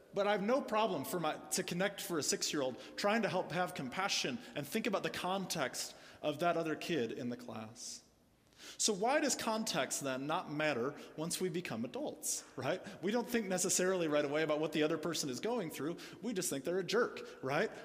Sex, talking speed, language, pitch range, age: male, 200 wpm, English, 150-200 Hz, 30-49